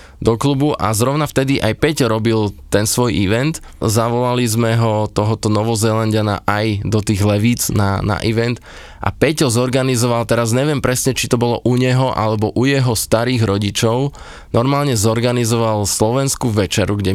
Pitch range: 105-125 Hz